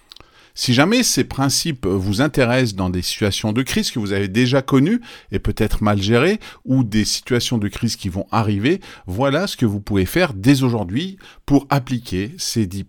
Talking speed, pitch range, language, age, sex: 185 wpm, 100-140 Hz, French, 40-59, male